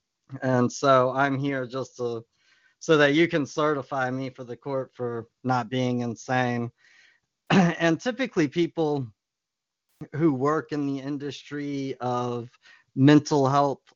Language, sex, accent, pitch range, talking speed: English, male, American, 125-145 Hz, 130 wpm